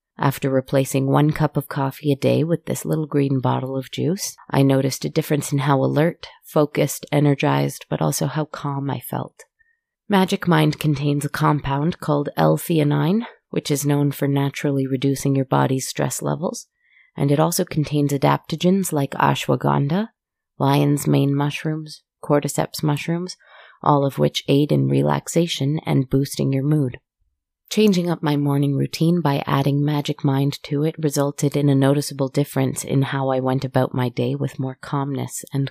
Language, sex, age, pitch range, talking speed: English, female, 30-49, 135-160 Hz, 160 wpm